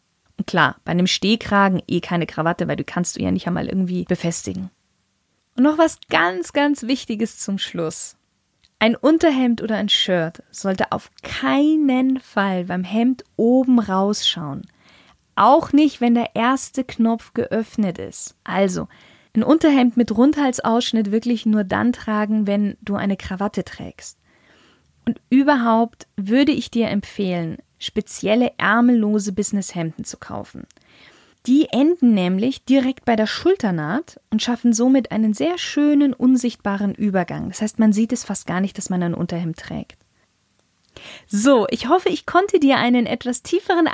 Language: German